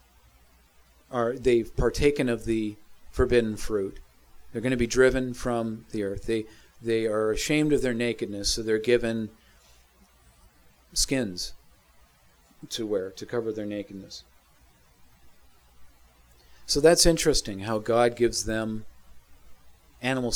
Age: 40-59